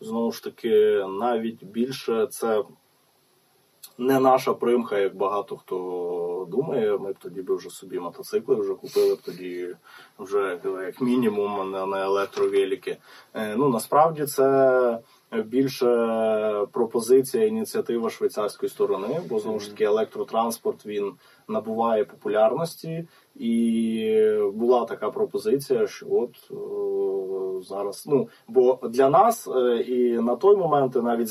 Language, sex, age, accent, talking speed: Ukrainian, male, 20-39, native, 120 wpm